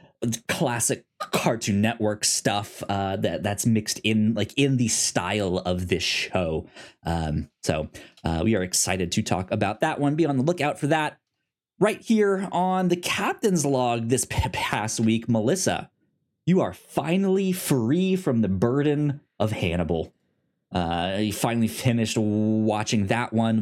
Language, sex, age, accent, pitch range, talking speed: English, male, 20-39, American, 105-145 Hz, 150 wpm